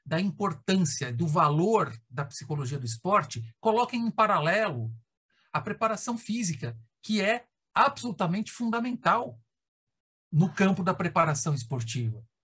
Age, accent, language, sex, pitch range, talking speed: 50-69, Brazilian, Portuguese, male, 160-230 Hz, 110 wpm